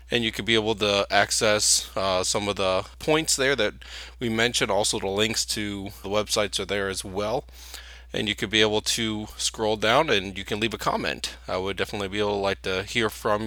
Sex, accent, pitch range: male, American, 90-105 Hz